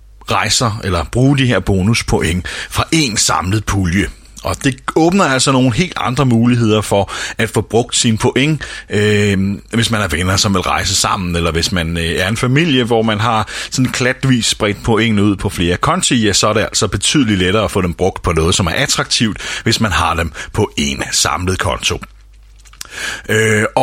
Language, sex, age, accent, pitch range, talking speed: Danish, male, 30-49, native, 95-125 Hz, 190 wpm